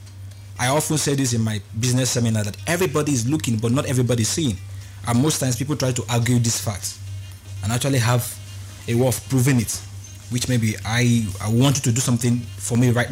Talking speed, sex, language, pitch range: 210 wpm, male, English, 100-130 Hz